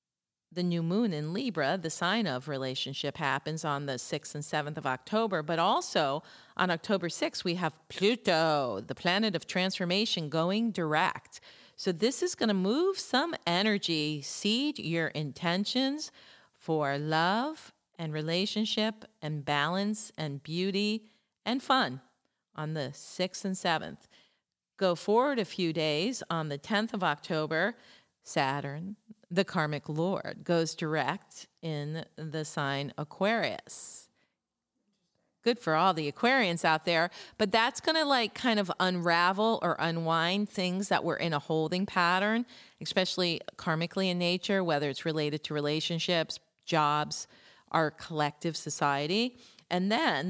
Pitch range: 155-205 Hz